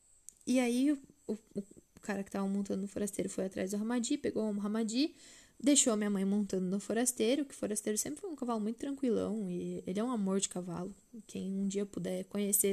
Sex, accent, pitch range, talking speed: female, Brazilian, 190-270 Hz, 215 wpm